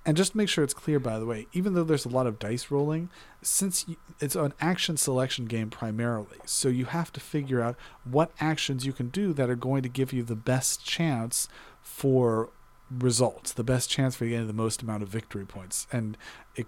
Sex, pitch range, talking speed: male, 115-145 Hz, 215 wpm